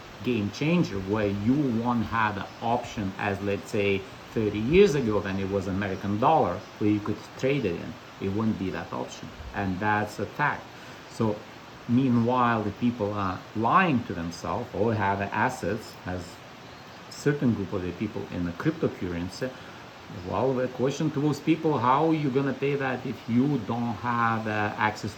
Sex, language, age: male, English, 50-69